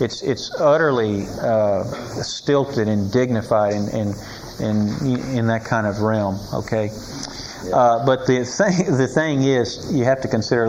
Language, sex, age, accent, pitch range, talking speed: English, male, 40-59, American, 100-120 Hz, 155 wpm